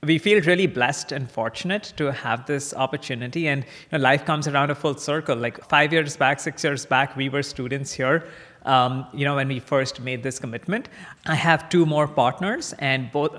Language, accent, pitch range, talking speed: English, Indian, 125-155 Hz, 205 wpm